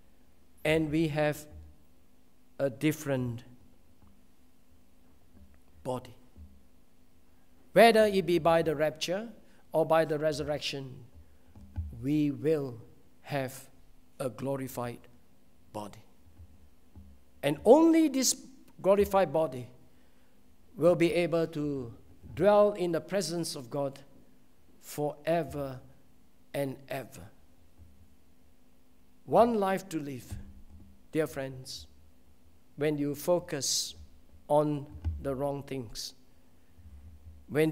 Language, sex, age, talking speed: English, male, 50-69, 85 wpm